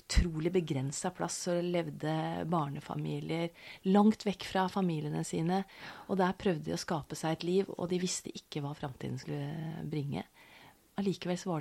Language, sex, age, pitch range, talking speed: English, female, 30-49, 145-180 Hz, 155 wpm